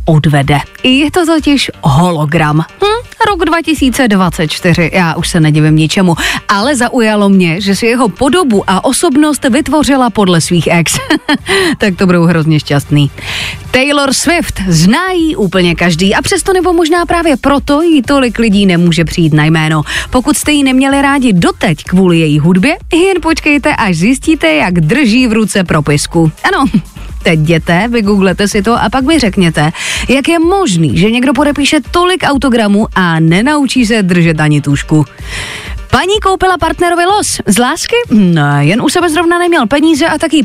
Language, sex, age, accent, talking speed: Czech, female, 30-49, native, 160 wpm